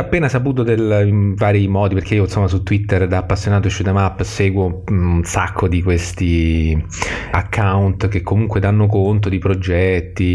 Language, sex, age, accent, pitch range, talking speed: Italian, male, 30-49, native, 90-110 Hz, 160 wpm